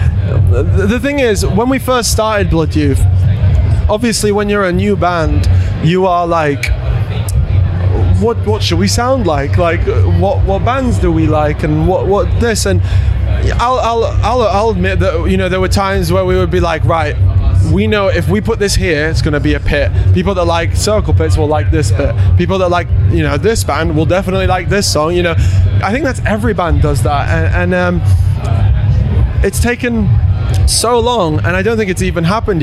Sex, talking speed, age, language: male, 200 wpm, 20-39, English